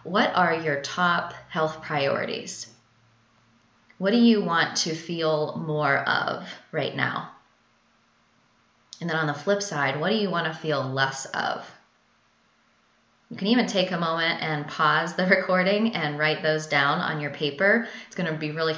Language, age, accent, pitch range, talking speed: English, 20-39, American, 145-180 Hz, 165 wpm